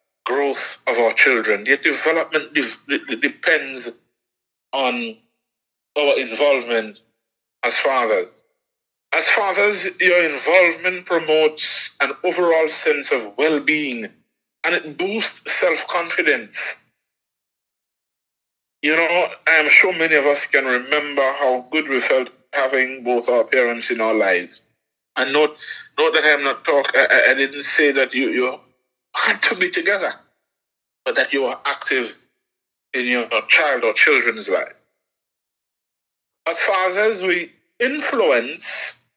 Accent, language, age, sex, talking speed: Nigerian, English, 50-69, male, 125 wpm